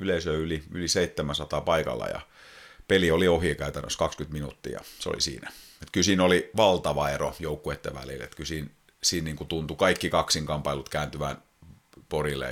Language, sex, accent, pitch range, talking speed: Finnish, male, native, 75-95 Hz, 140 wpm